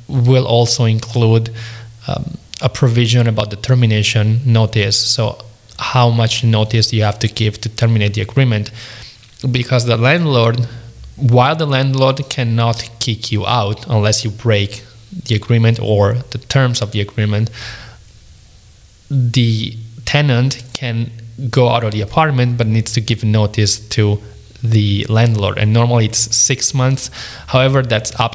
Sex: male